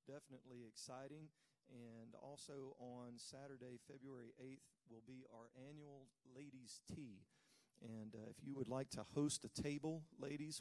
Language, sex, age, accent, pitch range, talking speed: English, male, 40-59, American, 115-140 Hz, 140 wpm